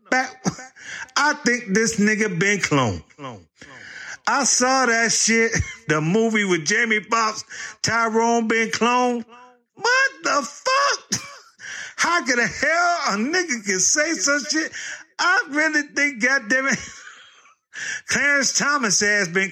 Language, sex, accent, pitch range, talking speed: English, male, American, 210-300 Hz, 130 wpm